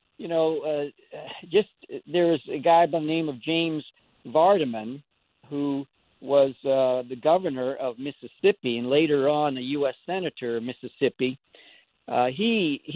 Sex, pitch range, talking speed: male, 130-160 Hz, 140 wpm